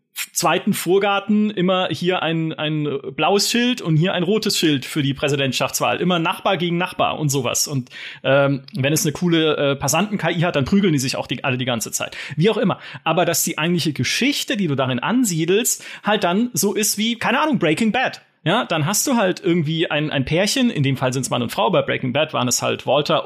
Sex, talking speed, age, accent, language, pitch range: male, 220 wpm, 30-49, German, German, 145-205 Hz